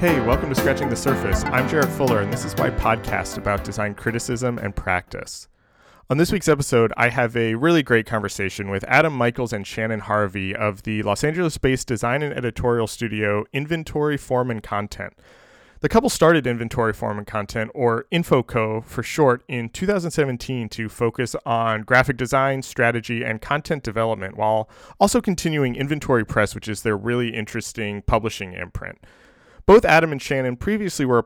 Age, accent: 30-49, American